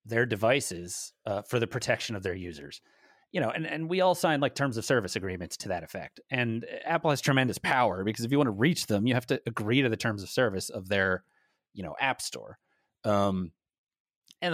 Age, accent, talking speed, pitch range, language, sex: 30-49, American, 220 wpm, 115-155 Hz, English, male